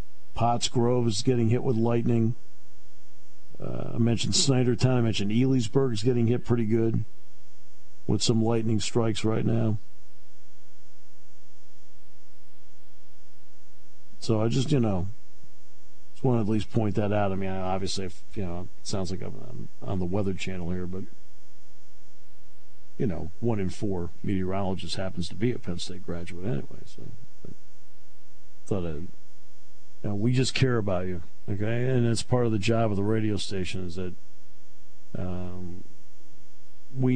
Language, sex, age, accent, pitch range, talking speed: English, male, 50-69, American, 75-115 Hz, 155 wpm